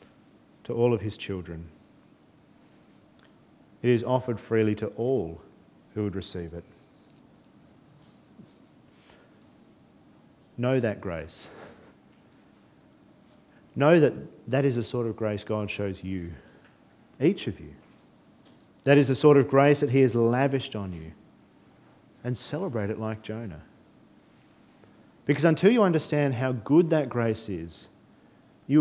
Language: English